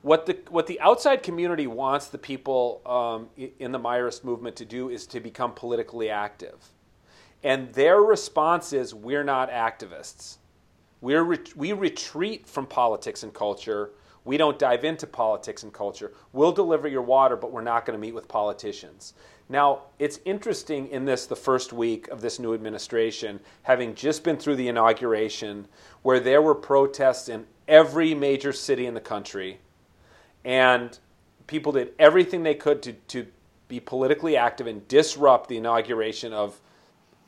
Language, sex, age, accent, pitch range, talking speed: English, male, 40-59, American, 120-155 Hz, 160 wpm